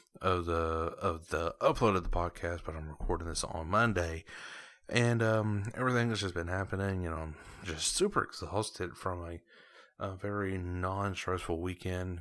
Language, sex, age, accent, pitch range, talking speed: English, male, 30-49, American, 90-110 Hz, 160 wpm